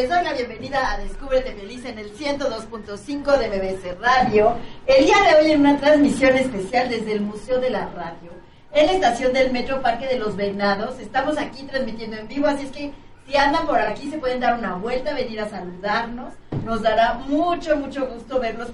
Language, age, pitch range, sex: Spanish, 40-59, 220-275 Hz, female